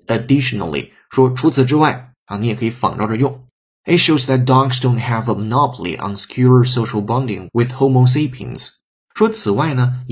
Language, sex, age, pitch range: Chinese, male, 20-39, 110-135 Hz